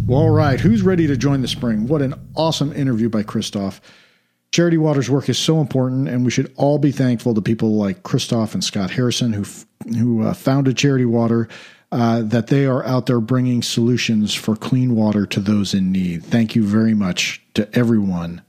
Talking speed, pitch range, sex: 200 wpm, 110-135 Hz, male